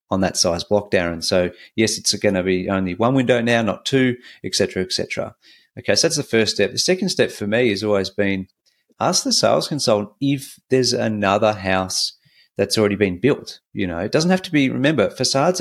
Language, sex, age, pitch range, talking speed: English, male, 40-59, 95-125 Hz, 215 wpm